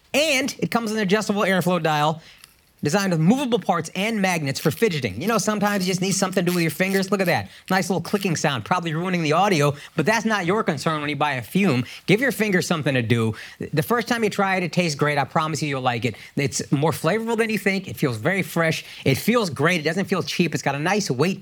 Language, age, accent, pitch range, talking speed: English, 40-59, American, 150-220 Hz, 260 wpm